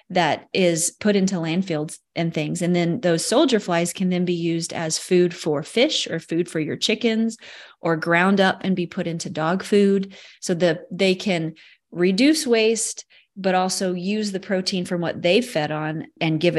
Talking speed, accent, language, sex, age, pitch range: 190 wpm, American, English, female, 30-49, 165-195 Hz